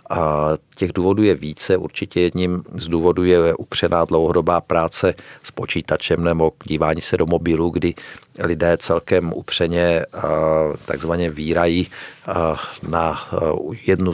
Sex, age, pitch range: male, 50-69, 80-90 Hz